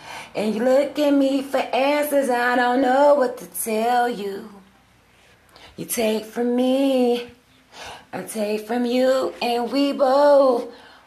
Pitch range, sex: 220-260 Hz, female